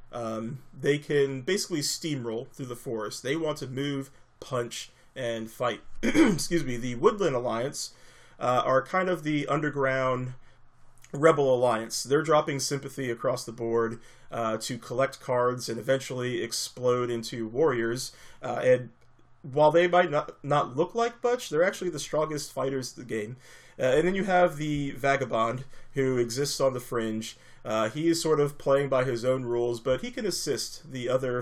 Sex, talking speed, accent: male, 170 wpm, American